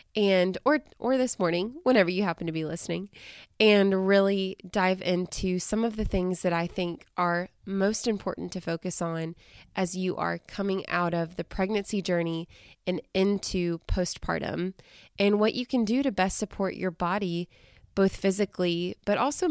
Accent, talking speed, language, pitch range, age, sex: American, 165 wpm, English, 170-200 Hz, 20-39, female